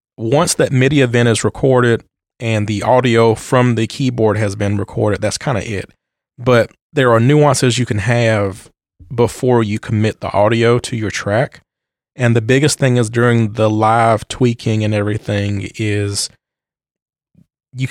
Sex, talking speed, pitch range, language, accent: male, 155 wpm, 110-130 Hz, English, American